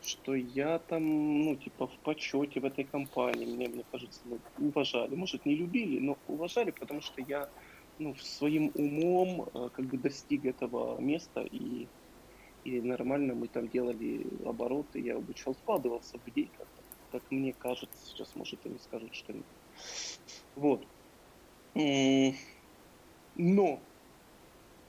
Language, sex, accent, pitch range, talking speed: Ukrainian, male, native, 130-160 Hz, 125 wpm